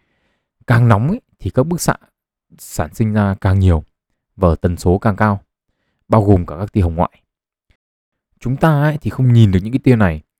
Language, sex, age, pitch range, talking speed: Vietnamese, male, 20-39, 95-125 Hz, 200 wpm